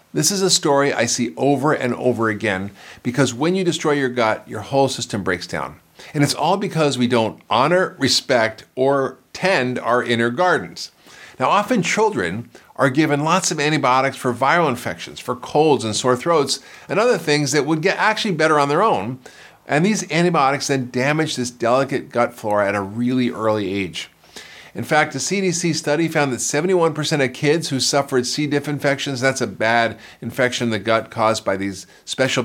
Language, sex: English, male